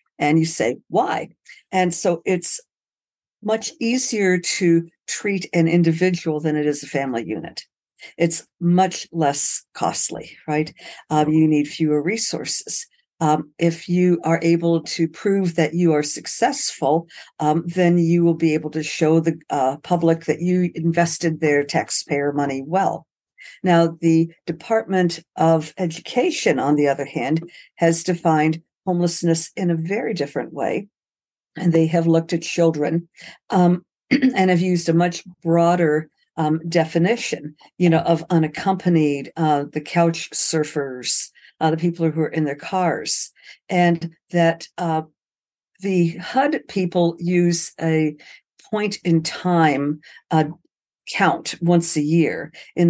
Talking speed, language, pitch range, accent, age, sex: 140 wpm, English, 155-180 Hz, American, 50-69, female